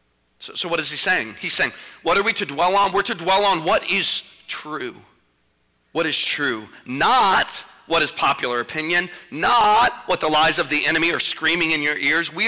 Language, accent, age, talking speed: English, American, 40-59, 200 wpm